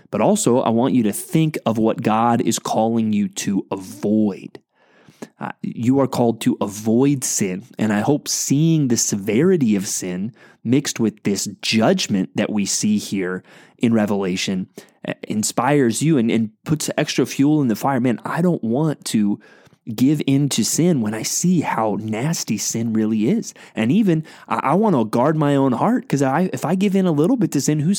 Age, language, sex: 30-49, English, male